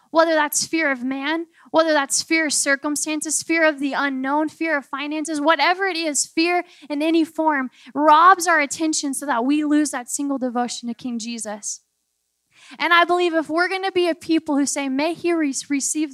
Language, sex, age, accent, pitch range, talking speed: English, female, 10-29, American, 265-315 Hz, 195 wpm